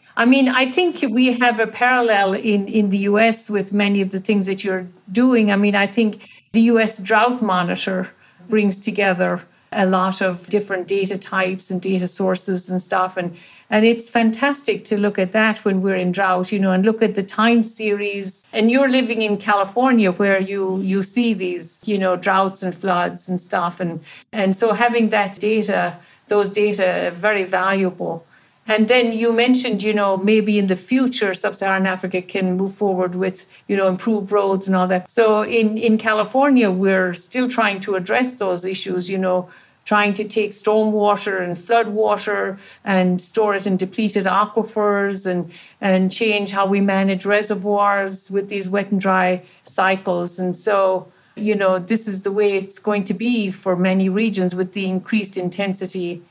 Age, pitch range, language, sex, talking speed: 60-79, 185-215 Hz, English, female, 180 wpm